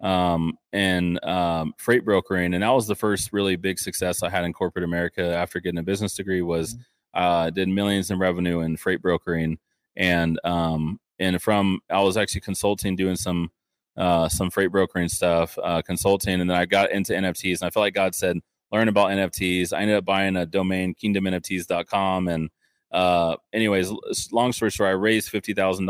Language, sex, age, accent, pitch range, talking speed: English, male, 20-39, American, 85-100 Hz, 185 wpm